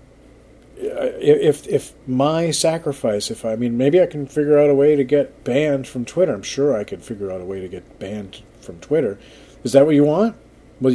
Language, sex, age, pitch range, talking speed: English, male, 40-59, 115-145 Hz, 215 wpm